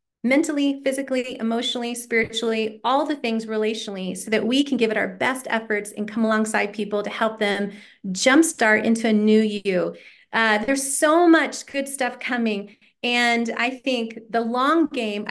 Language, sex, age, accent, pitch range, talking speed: English, female, 30-49, American, 215-260 Hz, 165 wpm